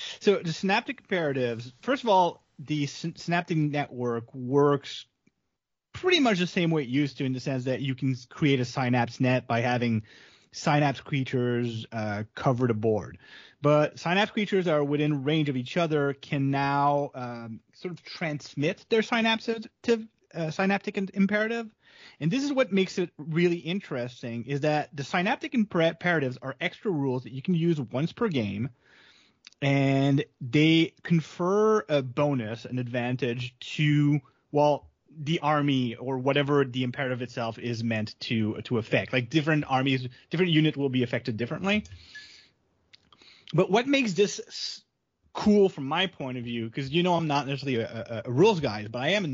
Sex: male